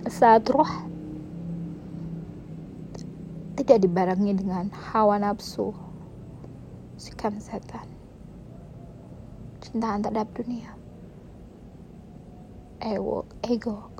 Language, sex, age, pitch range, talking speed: Indonesian, female, 20-39, 200-270 Hz, 55 wpm